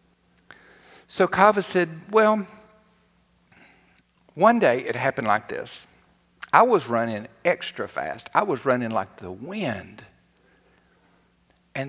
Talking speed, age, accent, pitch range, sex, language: 110 wpm, 50-69, American, 135-195 Hz, male, English